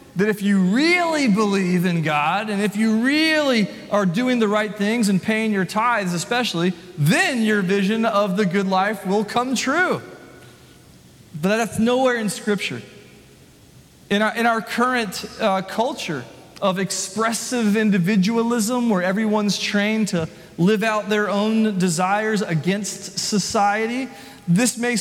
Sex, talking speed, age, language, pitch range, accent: male, 140 wpm, 30-49, English, 185-220 Hz, American